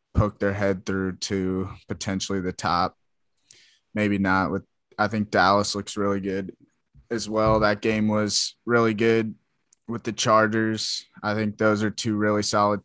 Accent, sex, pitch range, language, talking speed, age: American, male, 100-115 Hz, English, 160 wpm, 20-39